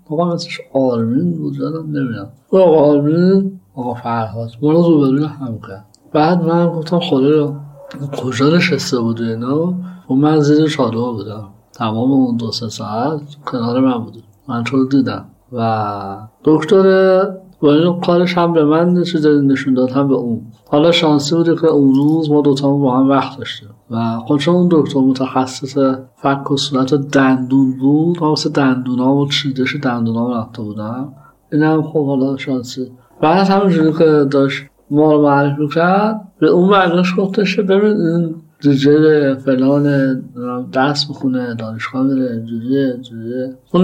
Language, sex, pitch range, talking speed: Persian, male, 125-155 Hz, 155 wpm